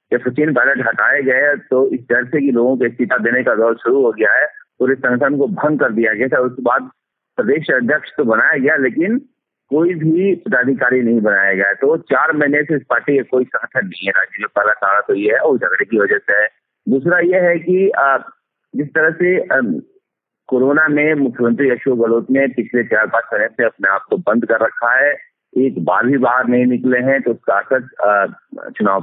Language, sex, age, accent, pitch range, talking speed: Hindi, male, 50-69, native, 125-180 Hz, 215 wpm